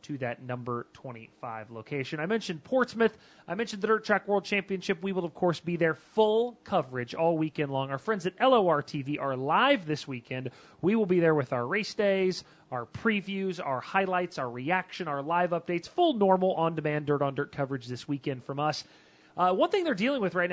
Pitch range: 150-200 Hz